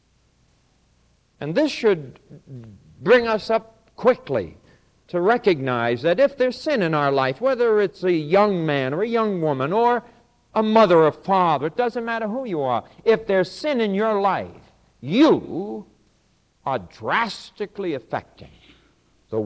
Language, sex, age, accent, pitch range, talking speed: English, male, 60-79, American, 130-200 Hz, 145 wpm